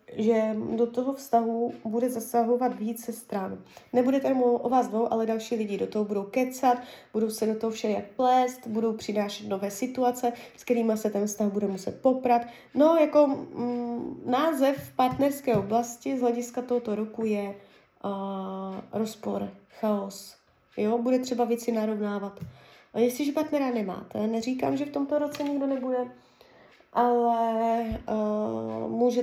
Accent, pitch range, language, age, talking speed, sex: native, 215-255 Hz, Czech, 20-39, 145 wpm, female